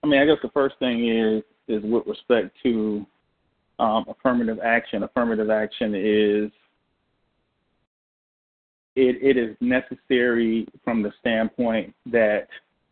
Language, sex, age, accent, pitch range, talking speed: English, male, 40-59, American, 110-125 Hz, 120 wpm